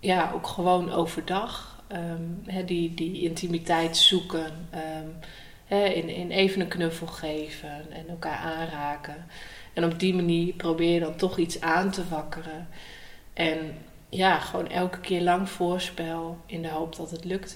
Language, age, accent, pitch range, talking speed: Dutch, 30-49, Dutch, 155-180 Hz, 145 wpm